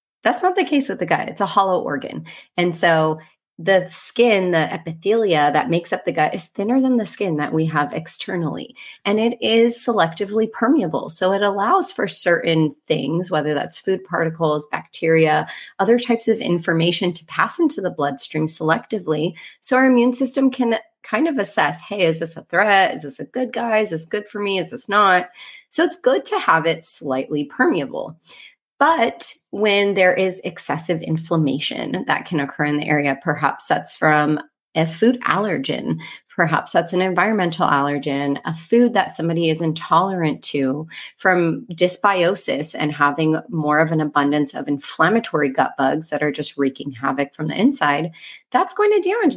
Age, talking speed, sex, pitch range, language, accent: 30-49, 175 wpm, female, 155-215 Hz, English, American